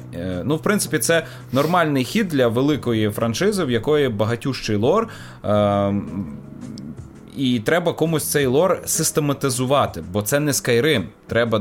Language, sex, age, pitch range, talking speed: Ukrainian, male, 30-49, 105-150 Hz, 125 wpm